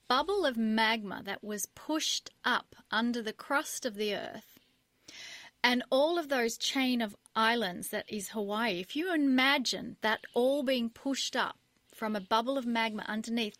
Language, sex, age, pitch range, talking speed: English, female, 30-49, 215-260 Hz, 165 wpm